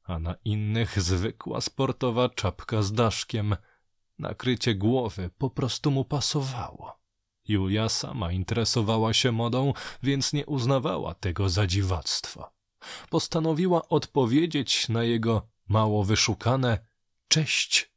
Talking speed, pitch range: 105 wpm, 100-130 Hz